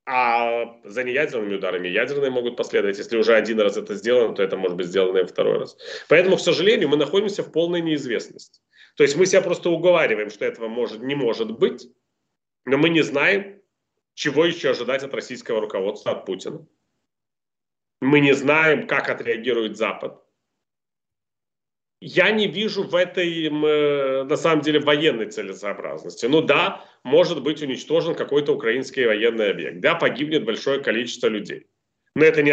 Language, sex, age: Russian, male, 30-49